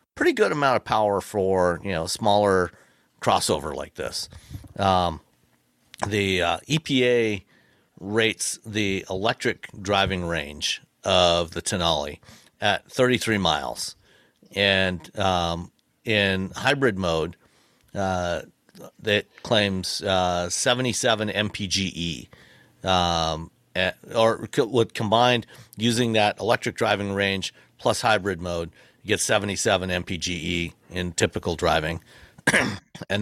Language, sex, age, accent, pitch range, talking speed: English, male, 50-69, American, 90-110 Hz, 105 wpm